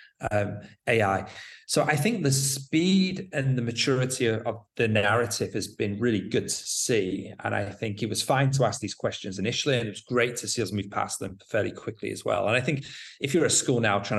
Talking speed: 230 wpm